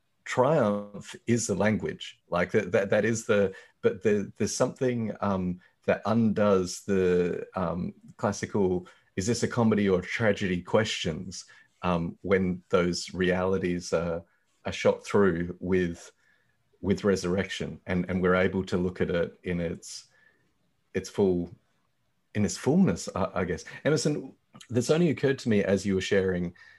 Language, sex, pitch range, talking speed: English, male, 90-110 Hz, 150 wpm